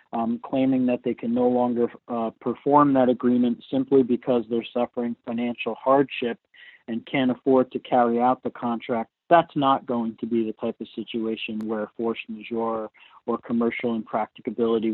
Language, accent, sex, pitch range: English, American, male, 115-130 Hz